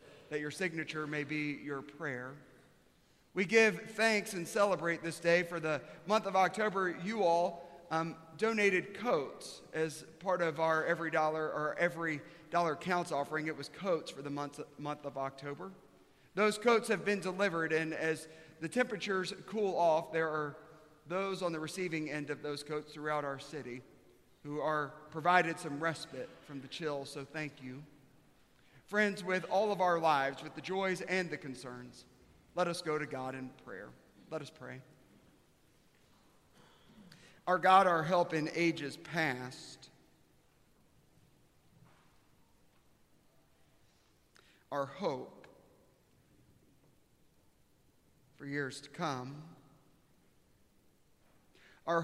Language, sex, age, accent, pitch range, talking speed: English, male, 40-59, American, 150-185 Hz, 130 wpm